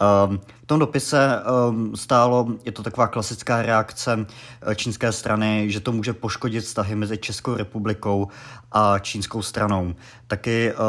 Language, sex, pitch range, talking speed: Czech, male, 105-115 Hz, 125 wpm